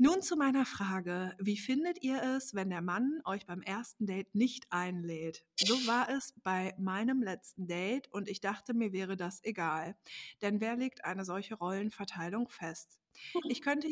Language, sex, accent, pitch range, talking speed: German, female, German, 195-245 Hz, 175 wpm